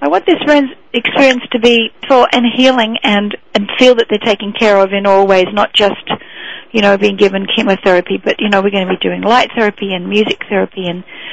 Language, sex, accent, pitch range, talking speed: English, female, Australian, 195-230 Hz, 215 wpm